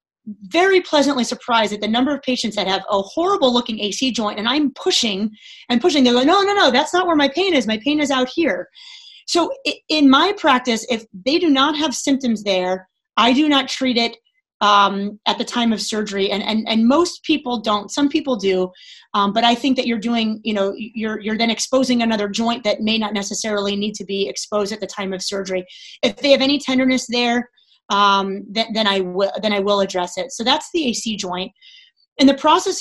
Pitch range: 205-270 Hz